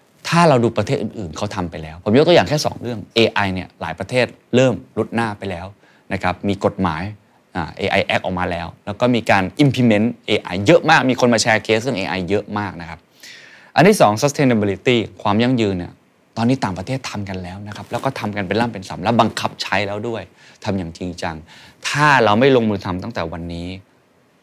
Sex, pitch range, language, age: male, 90-115 Hz, Thai, 20-39